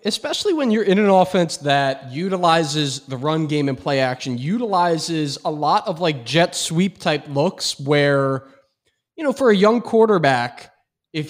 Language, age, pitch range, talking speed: English, 20-39, 140-195 Hz, 165 wpm